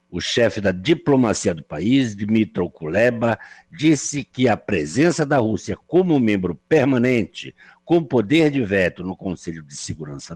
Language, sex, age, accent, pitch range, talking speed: Portuguese, male, 60-79, Brazilian, 105-145 Hz, 145 wpm